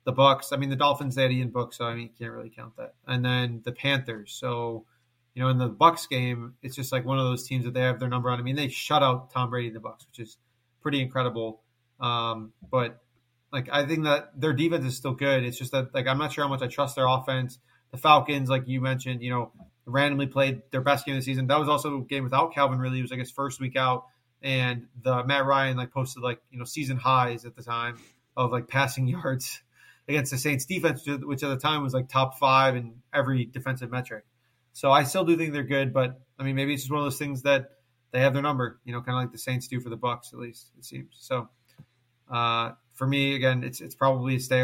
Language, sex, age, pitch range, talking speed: English, male, 30-49, 120-135 Hz, 260 wpm